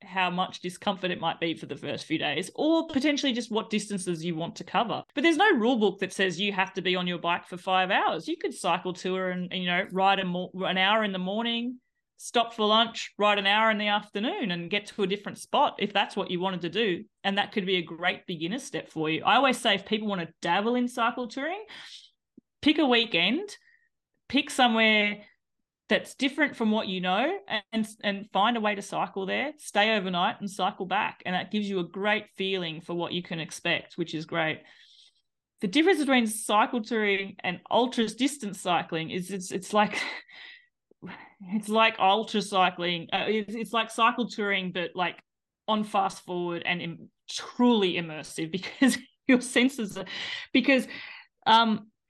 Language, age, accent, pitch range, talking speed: English, 30-49, Australian, 185-240 Hz, 195 wpm